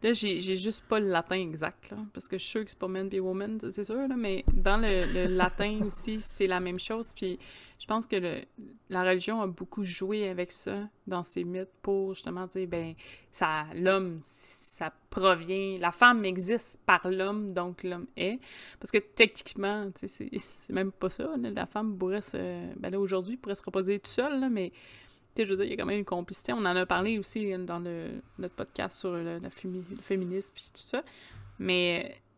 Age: 20-39